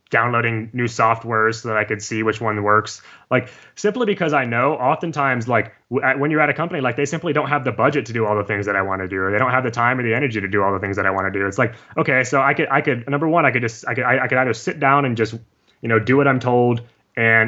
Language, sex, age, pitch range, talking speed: English, male, 20-39, 110-135 Hz, 315 wpm